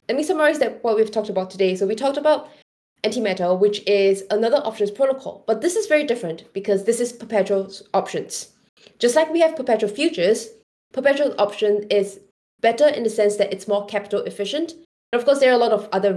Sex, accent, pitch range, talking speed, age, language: female, Malaysian, 195-240 Hz, 210 wpm, 10-29, English